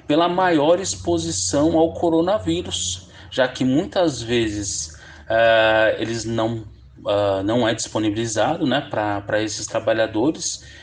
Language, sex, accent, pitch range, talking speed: Portuguese, male, Brazilian, 110-160 Hz, 110 wpm